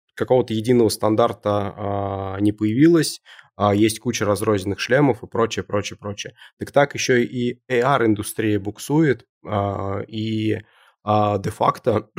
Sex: male